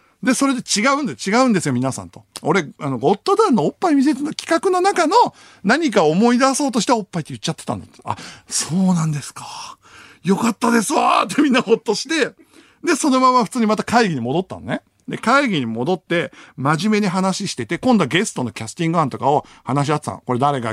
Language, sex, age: Japanese, male, 50-69